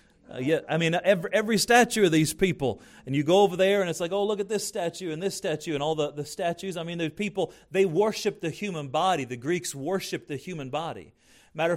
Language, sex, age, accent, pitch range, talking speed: English, male, 40-59, American, 150-200 Hz, 240 wpm